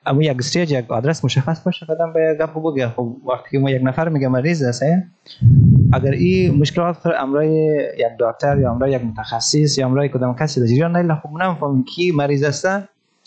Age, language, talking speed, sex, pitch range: 30-49, Persian, 170 wpm, male, 125-165 Hz